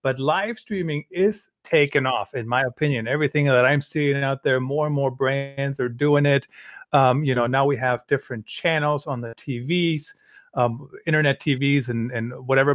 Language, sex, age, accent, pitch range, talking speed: English, male, 40-59, American, 125-165 Hz, 185 wpm